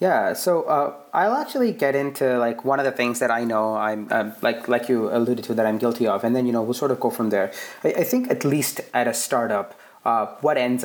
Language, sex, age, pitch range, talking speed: English, male, 30-49, 115-140 Hz, 260 wpm